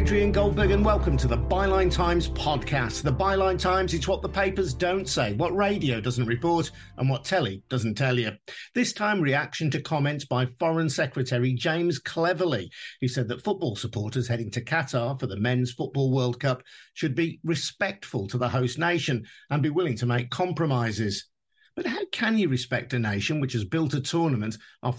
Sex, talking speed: male, 185 wpm